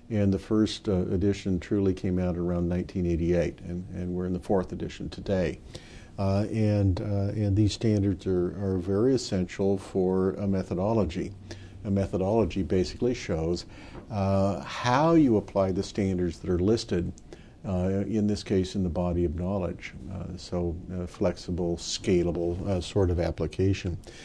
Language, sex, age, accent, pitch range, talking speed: English, male, 50-69, American, 90-110 Hz, 155 wpm